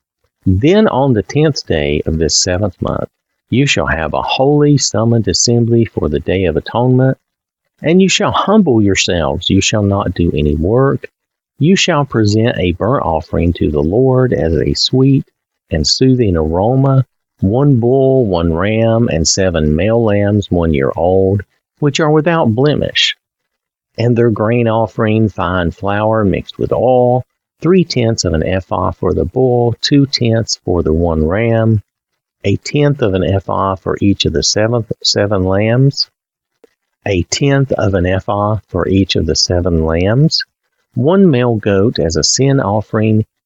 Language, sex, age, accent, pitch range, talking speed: English, male, 50-69, American, 85-130 Hz, 155 wpm